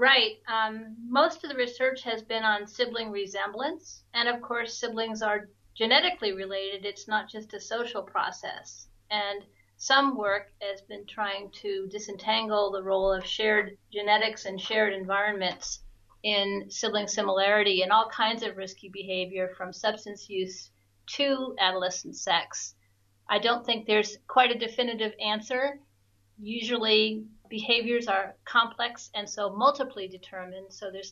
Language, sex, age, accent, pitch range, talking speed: English, female, 40-59, American, 195-225 Hz, 140 wpm